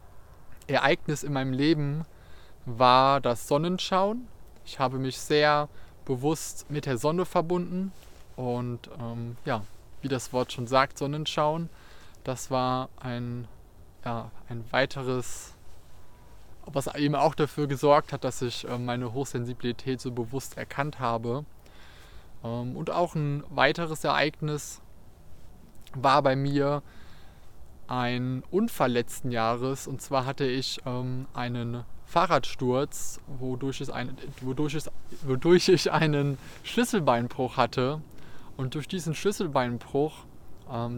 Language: German